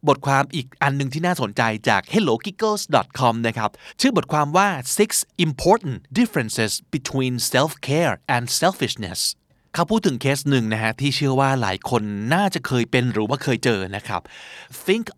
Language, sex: Thai, male